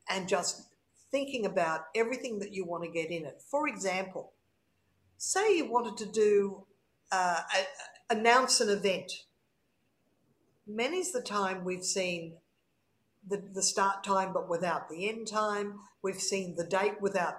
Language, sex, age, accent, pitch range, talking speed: English, female, 50-69, Australian, 185-240 Hz, 150 wpm